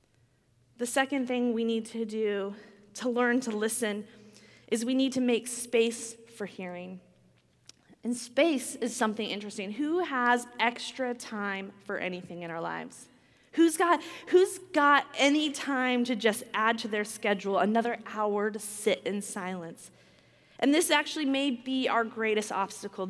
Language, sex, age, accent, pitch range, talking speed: English, female, 20-39, American, 210-275 Hz, 155 wpm